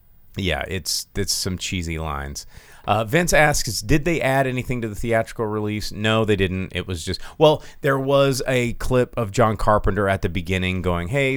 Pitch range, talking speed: 90-125 Hz, 190 wpm